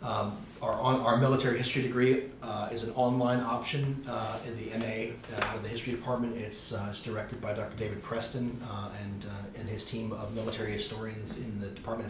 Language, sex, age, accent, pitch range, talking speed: English, male, 30-49, American, 105-115 Hz, 200 wpm